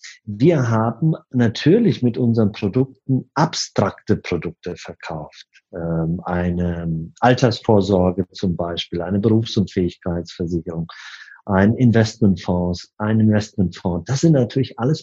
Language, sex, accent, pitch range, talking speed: German, male, German, 100-130 Hz, 100 wpm